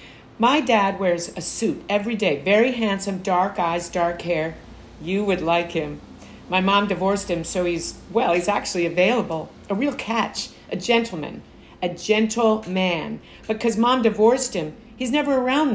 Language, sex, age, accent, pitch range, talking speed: English, female, 50-69, American, 170-225 Hz, 160 wpm